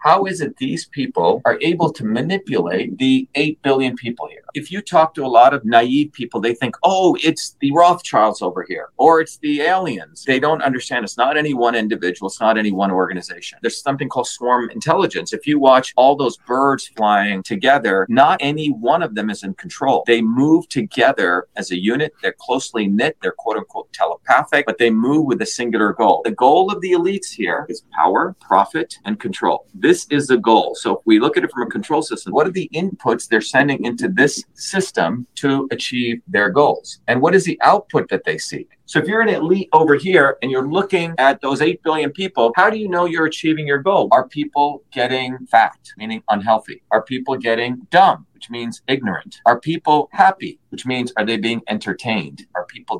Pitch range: 120-165 Hz